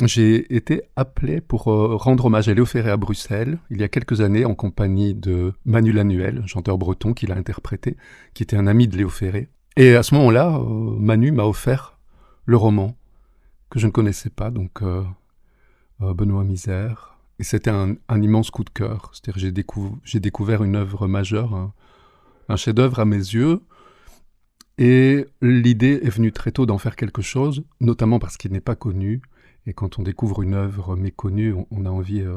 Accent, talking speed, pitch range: French, 185 wpm, 100-120 Hz